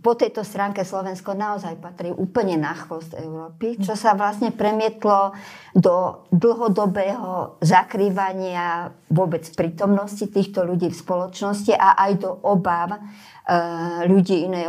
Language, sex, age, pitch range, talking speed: Slovak, male, 50-69, 165-195 Hz, 125 wpm